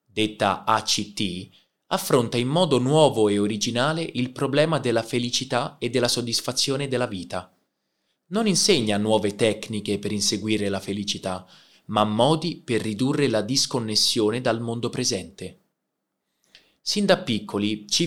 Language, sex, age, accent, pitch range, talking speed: Italian, male, 20-39, native, 100-140 Hz, 125 wpm